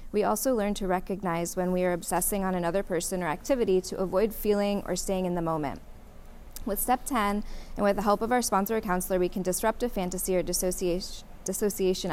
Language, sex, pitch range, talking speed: English, female, 175-200 Hz, 205 wpm